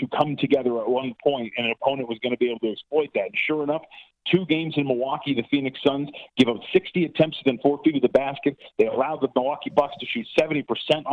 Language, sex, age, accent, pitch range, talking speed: English, male, 40-59, American, 120-155 Hz, 245 wpm